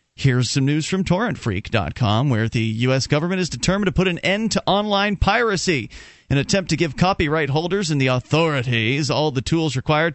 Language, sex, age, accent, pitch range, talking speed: English, male, 30-49, American, 120-160 Hz, 185 wpm